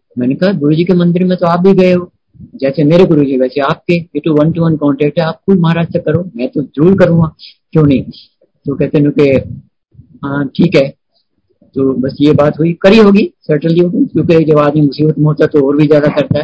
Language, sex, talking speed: Hindi, male, 120 wpm